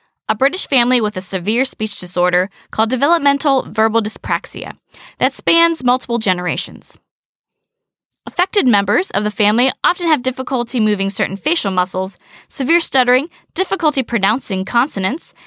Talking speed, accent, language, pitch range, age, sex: 130 wpm, American, English, 200-280 Hz, 10-29, female